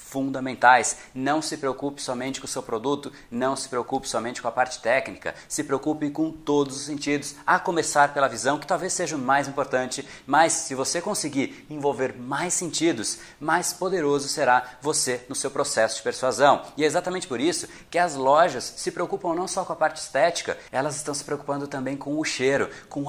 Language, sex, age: Portuguese, male, 30-49